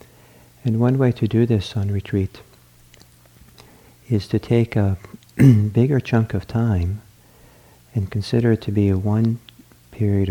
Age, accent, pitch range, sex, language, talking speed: 50-69, American, 80-105 Hz, male, English, 140 wpm